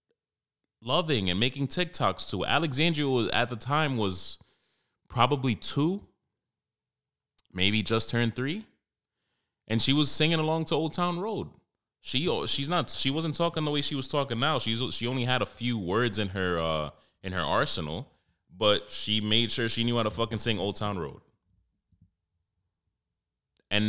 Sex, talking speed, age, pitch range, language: male, 165 wpm, 20-39, 95-130 Hz, English